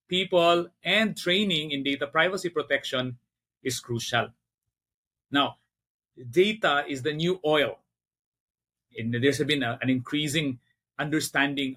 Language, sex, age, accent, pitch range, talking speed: English, male, 30-49, Filipino, 125-170 Hz, 110 wpm